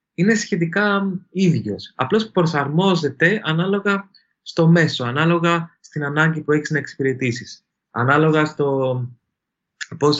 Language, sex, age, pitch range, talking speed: Greek, male, 20-39, 120-160 Hz, 105 wpm